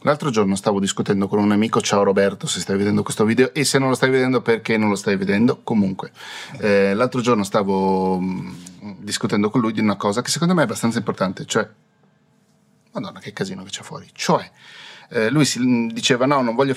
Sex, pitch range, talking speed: male, 100-130 Hz, 205 wpm